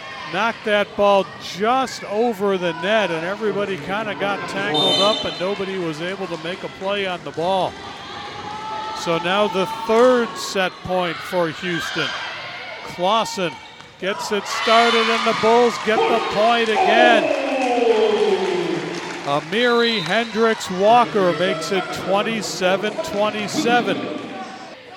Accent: American